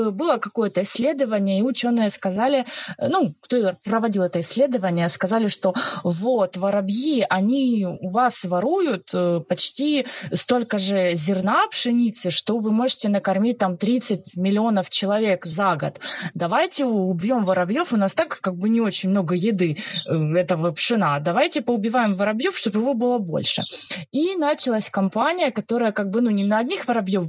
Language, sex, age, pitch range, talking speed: Russian, female, 20-39, 180-235 Hz, 145 wpm